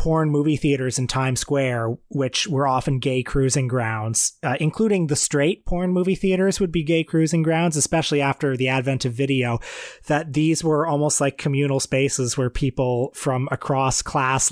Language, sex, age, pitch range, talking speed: English, male, 30-49, 125-145 Hz, 175 wpm